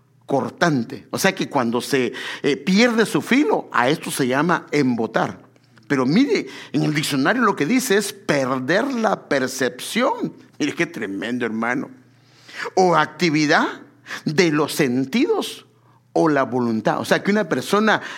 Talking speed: 145 wpm